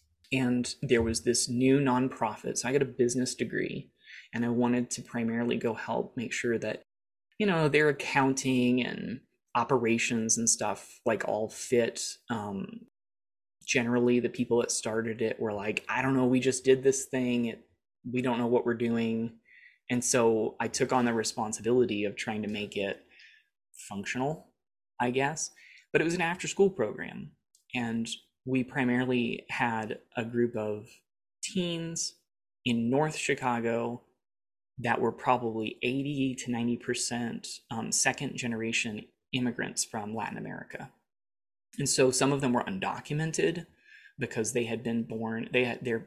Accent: American